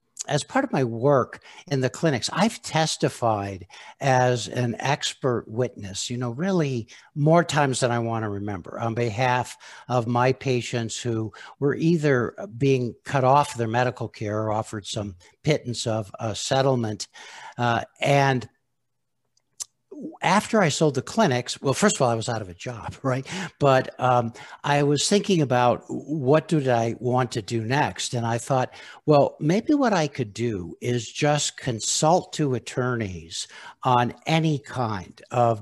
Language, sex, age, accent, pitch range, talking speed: English, male, 60-79, American, 115-140 Hz, 160 wpm